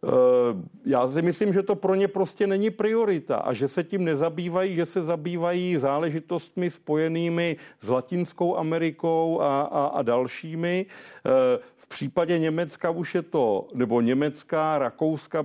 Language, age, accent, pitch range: Czech, 50-69, native, 135-160 Hz